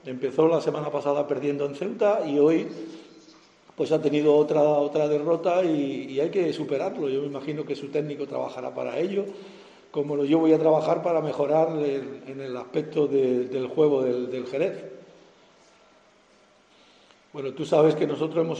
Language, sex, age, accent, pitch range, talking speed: Spanish, male, 50-69, Spanish, 140-155 Hz, 170 wpm